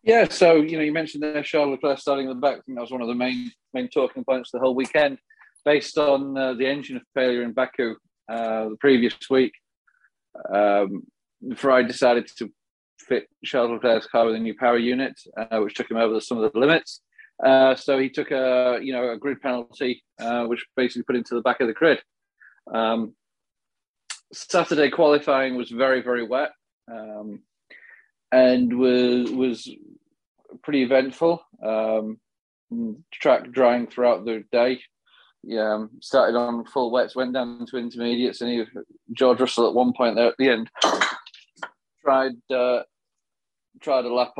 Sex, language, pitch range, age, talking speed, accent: male, English, 120-135 Hz, 30-49, 170 wpm, British